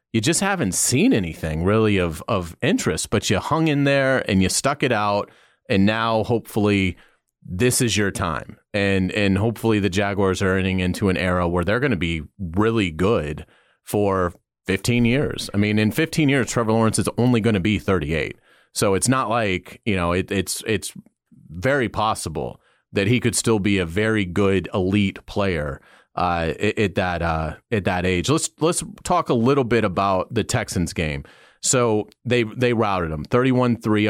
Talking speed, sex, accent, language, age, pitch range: 180 wpm, male, American, English, 30-49, 95-120 Hz